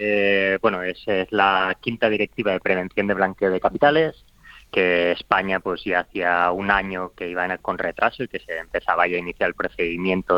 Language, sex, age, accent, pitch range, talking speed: Spanish, male, 20-39, Spanish, 90-120 Hz, 190 wpm